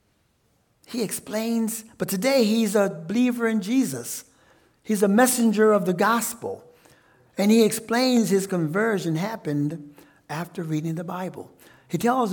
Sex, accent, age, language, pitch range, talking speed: male, American, 60-79, English, 155-200 Hz, 130 wpm